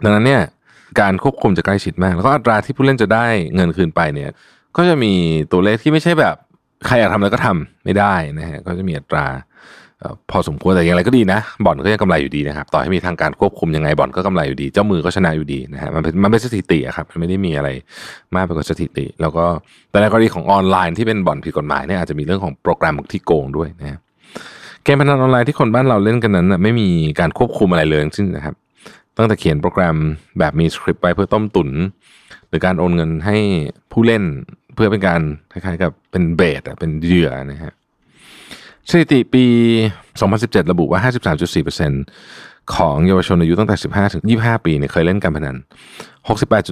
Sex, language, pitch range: male, Thai, 80-110 Hz